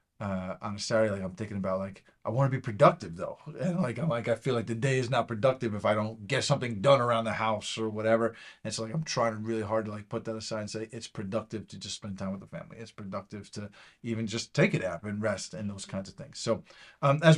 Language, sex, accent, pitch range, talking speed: English, male, American, 110-135 Hz, 275 wpm